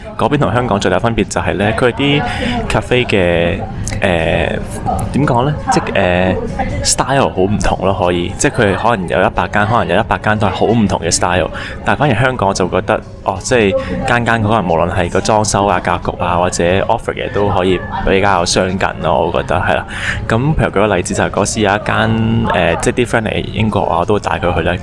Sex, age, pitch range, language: male, 20-39, 90-110 Hz, Chinese